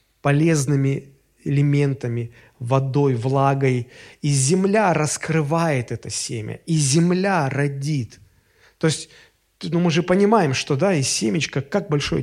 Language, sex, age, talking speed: Russian, male, 30-49, 120 wpm